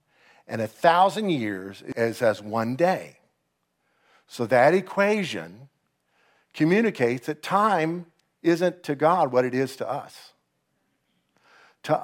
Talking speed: 115 wpm